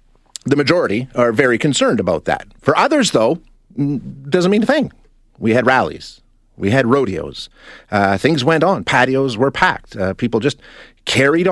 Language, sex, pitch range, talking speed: English, male, 100-145 Hz, 160 wpm